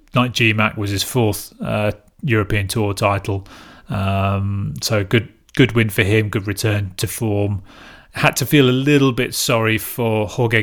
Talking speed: 165 wpm